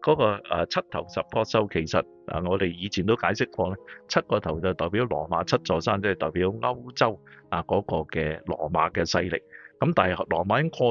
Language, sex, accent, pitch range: Chinese, male, native, 85-115 Hz